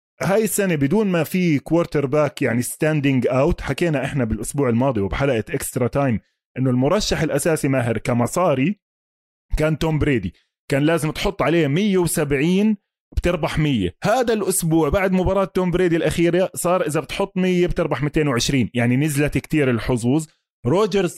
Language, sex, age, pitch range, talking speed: Arabic, male, 20-39, 135-180 Hz, 140 wpm